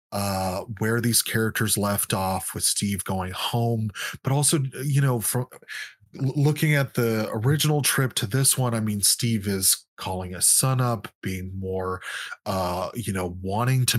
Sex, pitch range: male, 100-125 Hz